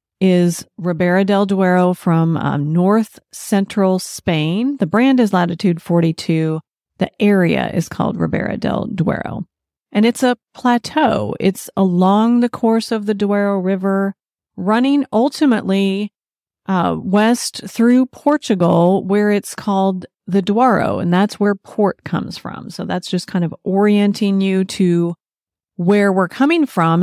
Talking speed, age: 140 wpm, 40-59